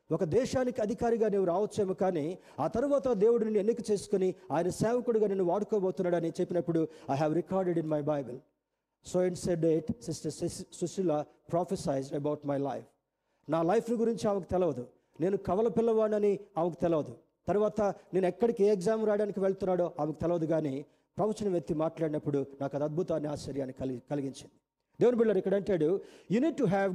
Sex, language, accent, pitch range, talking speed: male, Telugu, native, 160-210 Hz, 145 wpm